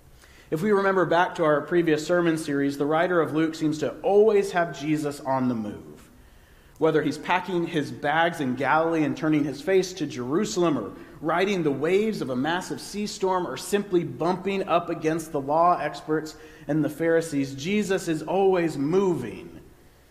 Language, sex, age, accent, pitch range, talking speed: English, male, 40-59, American, 140-175 Hz, 175 wpm